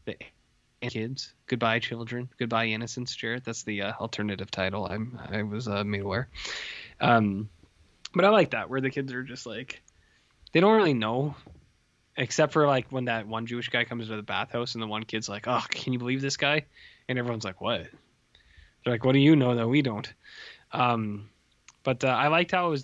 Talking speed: 200 wpm